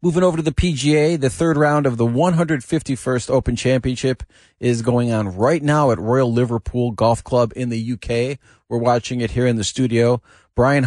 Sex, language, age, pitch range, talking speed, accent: male, English, 40-59, 110-135 Hz, 205 wpm, American